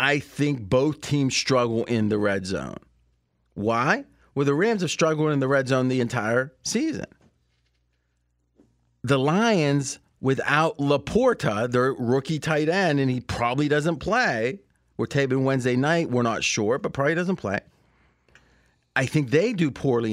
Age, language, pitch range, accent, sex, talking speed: 40-59, English, 100-160 Hz, American, male, 150 wpm